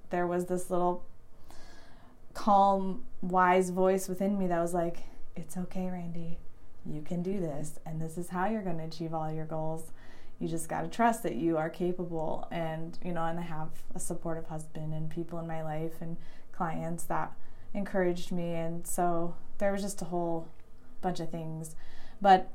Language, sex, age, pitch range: English, female, 20-39, 160-190 Hz